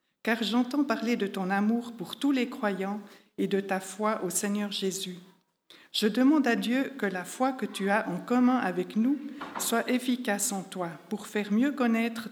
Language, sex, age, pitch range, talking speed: French, female, 50-69, 195-240 Hz, 190 wpm